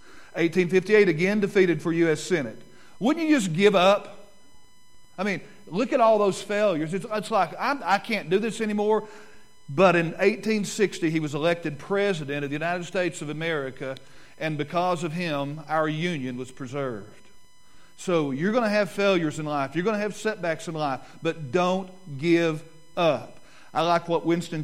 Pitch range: 160-200 Hz